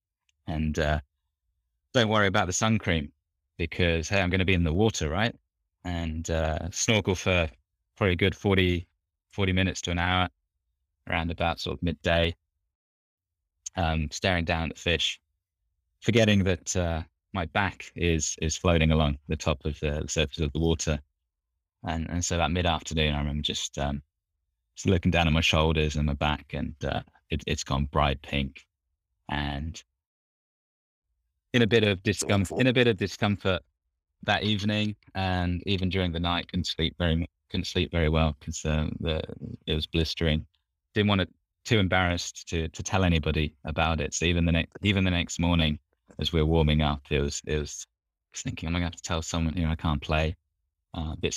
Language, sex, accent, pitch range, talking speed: English, male, British, 75-90 Hz, 190 wpm